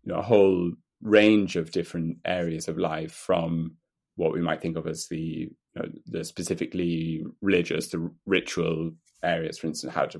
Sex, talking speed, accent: male, 175 wpm, British